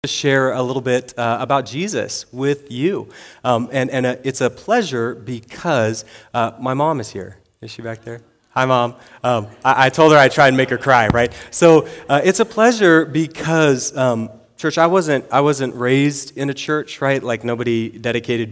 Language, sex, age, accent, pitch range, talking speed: English, male, 30-49, American, 110-135 Hz, 200 wpm